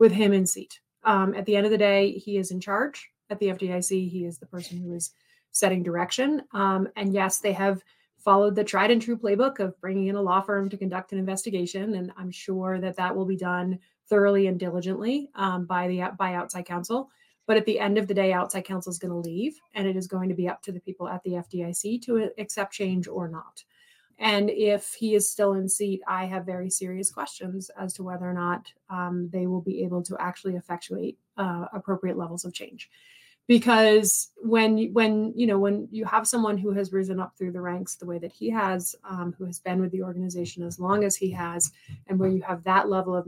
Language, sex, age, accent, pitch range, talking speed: English, female, 30-49, American, 180-210 Hz, 225 wpm